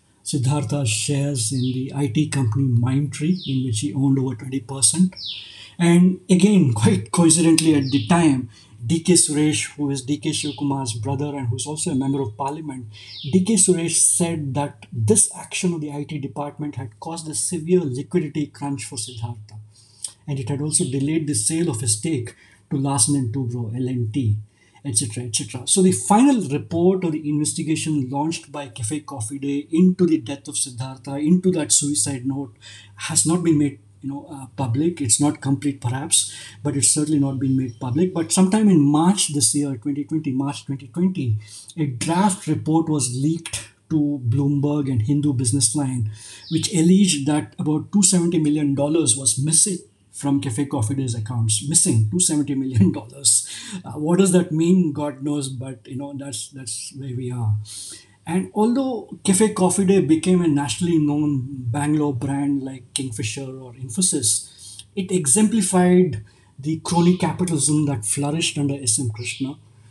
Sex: male